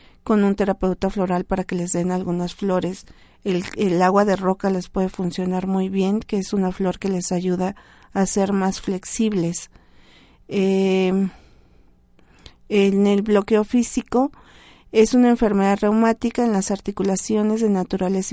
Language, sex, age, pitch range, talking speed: Spanish, female, 40-59, 190-215 Hz, 145 wpm